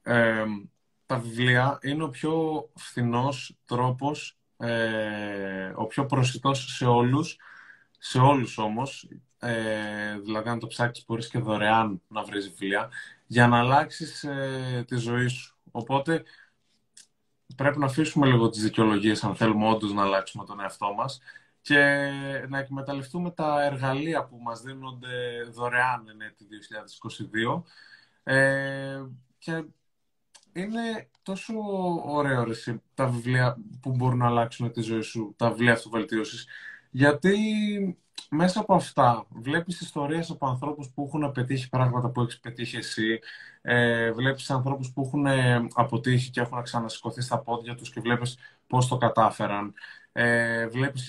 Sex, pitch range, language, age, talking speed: male, 115-140 Hz, Greek, 20-39, 135 wpm